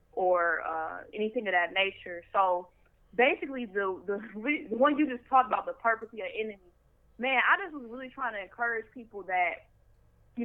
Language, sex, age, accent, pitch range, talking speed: English, female, 20-39, American, 185-235 Hz, 185 wpm